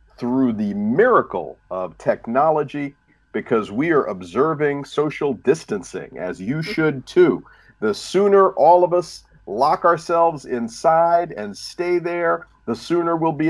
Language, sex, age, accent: English, male, 50-69, American